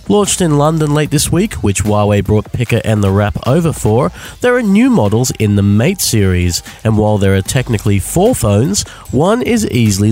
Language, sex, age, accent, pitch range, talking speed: English, male, 30-49, Australian, 100-150 Hz, 195 wpm